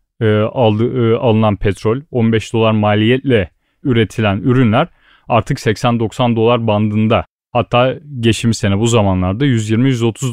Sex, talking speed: male, 115 wpm